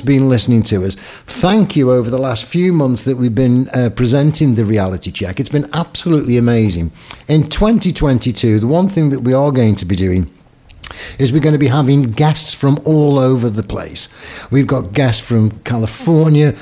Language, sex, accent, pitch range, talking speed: English, male, British, 115-155 Hz, 190 wpm